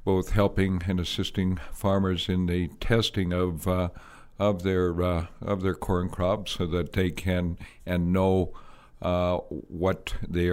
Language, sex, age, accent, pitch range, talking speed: English, male, 60-79, American, 85-95 Hz, 150 wpm